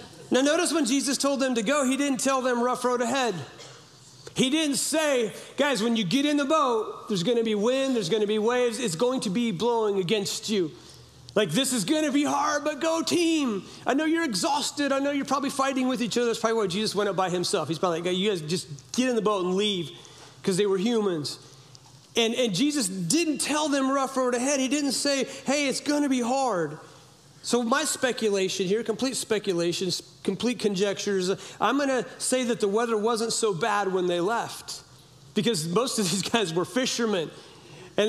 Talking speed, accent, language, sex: 205 wpm, American, English, male